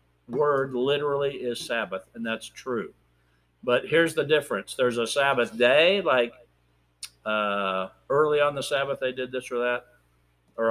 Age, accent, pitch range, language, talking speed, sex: 50-69, American, 105-140 Hz, English, 150 wpm, male